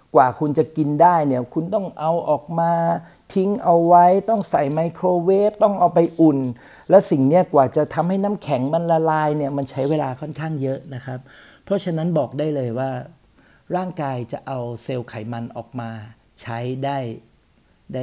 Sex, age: male, 60-79